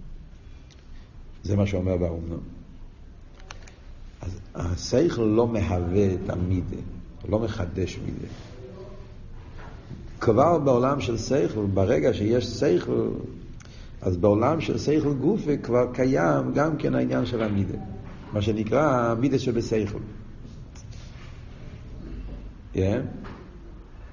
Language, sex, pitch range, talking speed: Hebrew, male, 90-130 Hz, 95 wpm